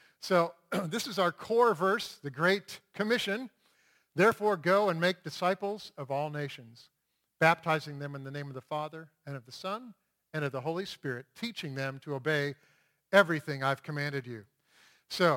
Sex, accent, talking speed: male, American, 170 wpm